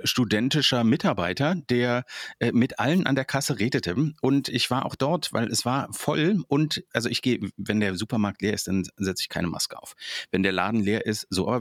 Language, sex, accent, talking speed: German, male, German, 210 wpm